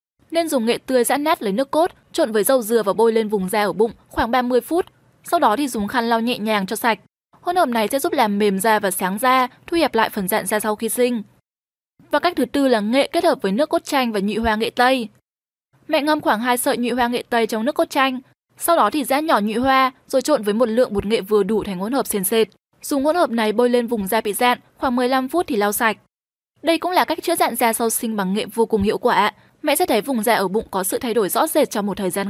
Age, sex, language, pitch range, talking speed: 10-29, female, Vietnamese, 220-290 Hz, 285 wpm